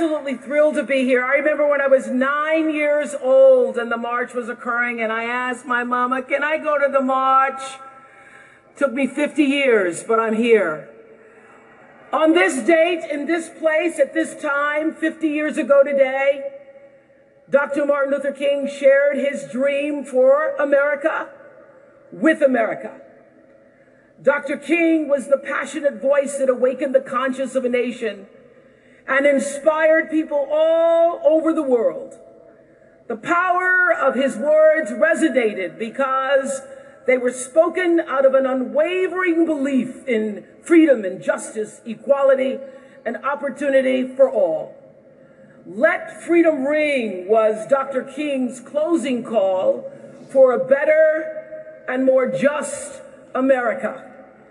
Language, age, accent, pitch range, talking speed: English, 50-69, American, 265-305 Hz, 130 wpm